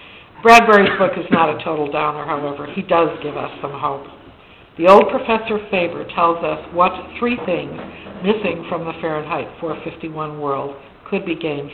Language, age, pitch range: English, 60-79, 155-205 Hz